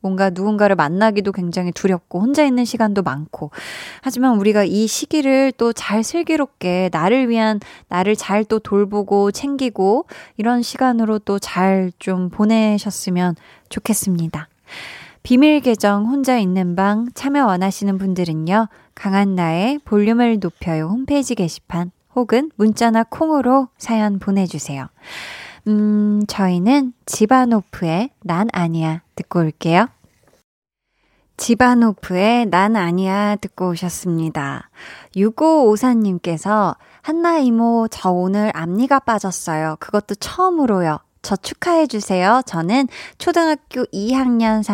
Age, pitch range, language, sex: 20-39, 185-240 Hz, Korean, female